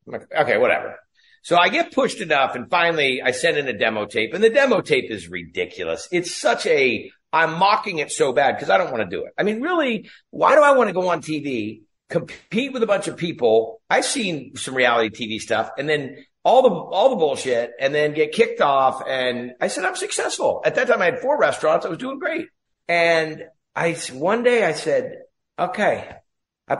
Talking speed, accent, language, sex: 220 wpm, American, English, male